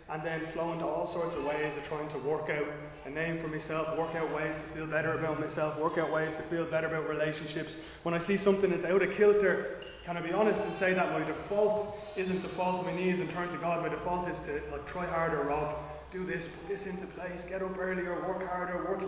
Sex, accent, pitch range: male, Irish, 155-190 Hz